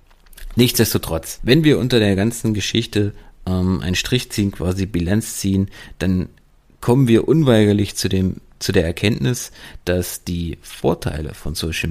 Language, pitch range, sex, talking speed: German, 85-115 Hz, male, 135 wpm